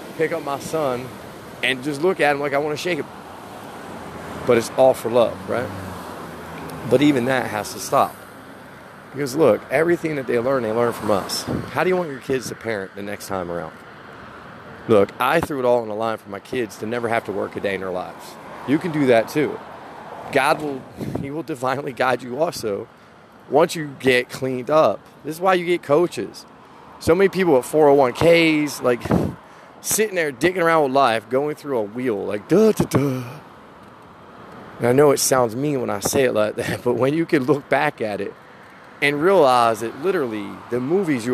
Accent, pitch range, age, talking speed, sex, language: American, 120-165 Hz, 40-59, 205 wpm, male, English